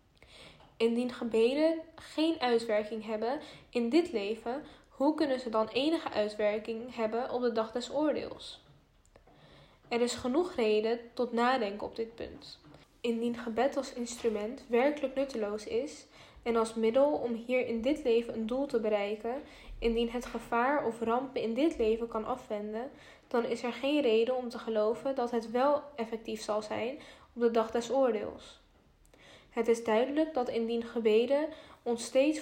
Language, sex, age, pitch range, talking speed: Dutch, female, 10-29, 225-265 Hz, 155 wpm